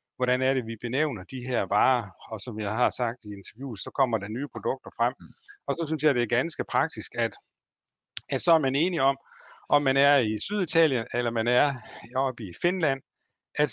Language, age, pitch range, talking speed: Danish, 60-79, 110-140 Hz, 210 wpm